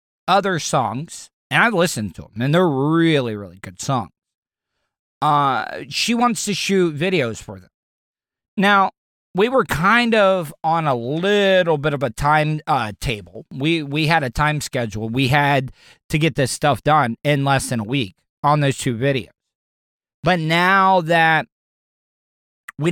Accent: American